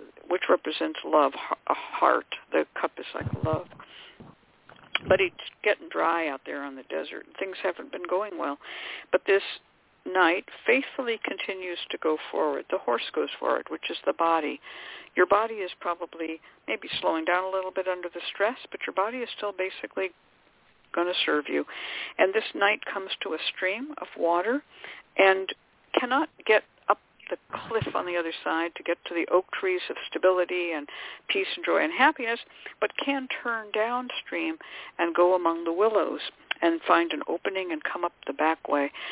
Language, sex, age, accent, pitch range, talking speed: English, female, 60-79, American, 170-240 Hz, 175 wpm